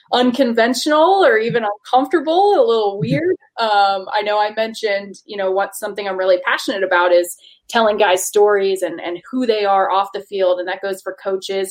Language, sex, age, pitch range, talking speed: English, female, 20-39, 190-230 Hz, 190 wpm